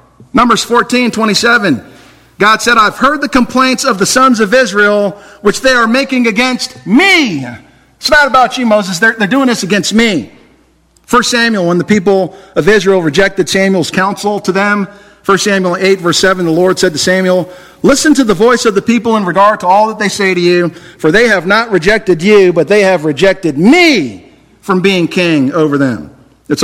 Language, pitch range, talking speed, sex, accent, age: English, 170-220 Hz, 195 wpm, male, American, 50-69